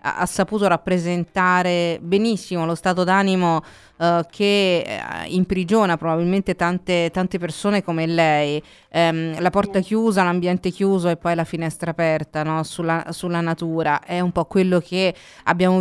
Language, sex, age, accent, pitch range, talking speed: Italian, female, 30-49, native, 165-190 Hz, 145 wpm